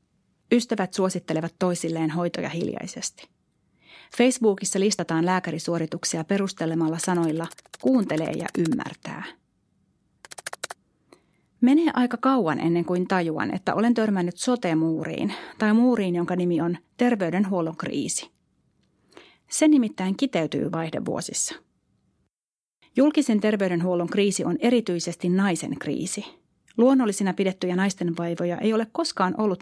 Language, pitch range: Finnish, 175-220 Hz